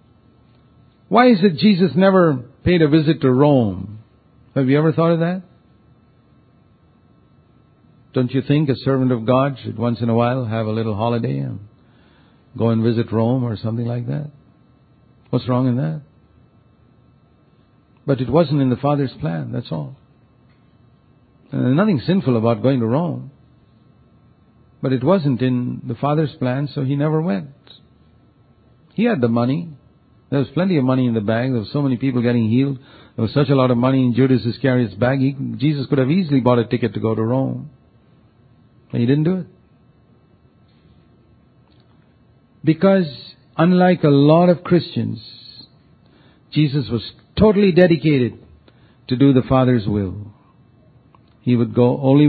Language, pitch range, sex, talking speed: English, 120-145 Hz, male, 160 wpm